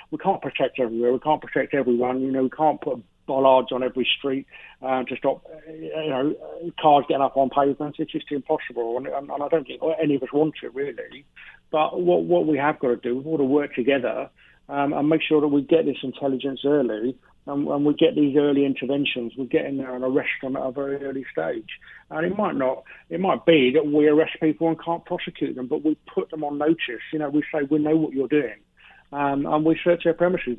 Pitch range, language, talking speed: 135-155 Hz, English, 235 wpm